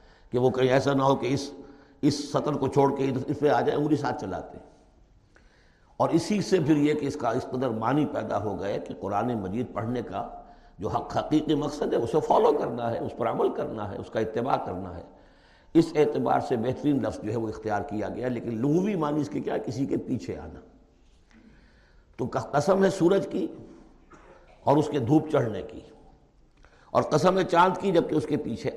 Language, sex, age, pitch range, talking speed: Urdu, male, 60-79, 125-155 Hz, 205 wpm